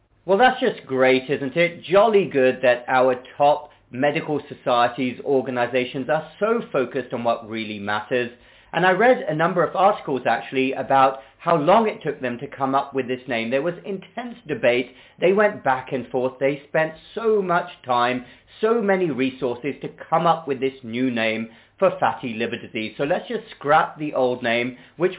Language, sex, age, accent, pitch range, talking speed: English, male, 40-59, British, 125-170 Hz, 185 wpm